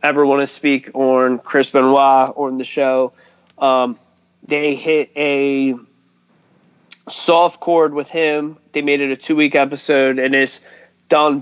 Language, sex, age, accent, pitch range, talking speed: English, male, 20-39, American, 130-150 Hz, 150 wpm